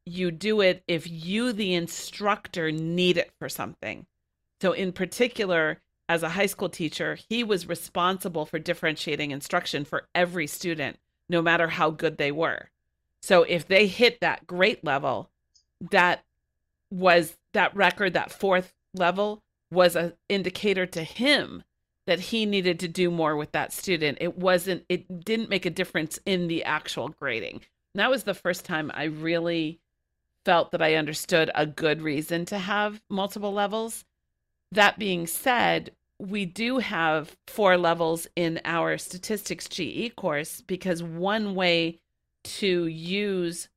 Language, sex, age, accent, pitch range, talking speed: English, female, 40-59, American, 160-190 Hz, 150 wpm